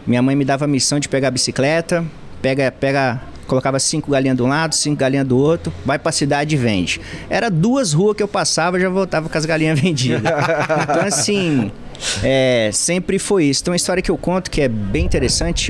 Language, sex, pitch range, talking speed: Portuguese, male, 135-210 Hz, 220 wpm